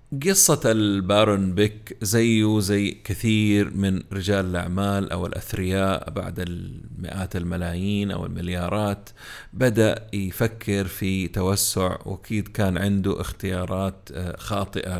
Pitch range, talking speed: 95-110 Hz, 100 wpm